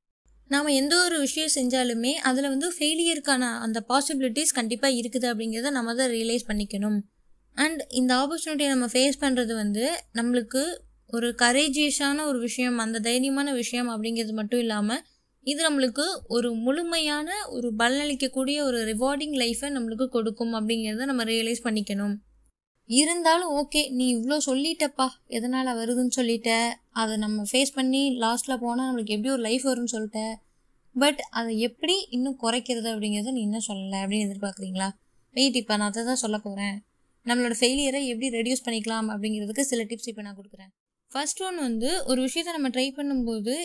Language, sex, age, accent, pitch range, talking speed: Tamil, female, 20-39, native, 230-275 Hz, 145 wpm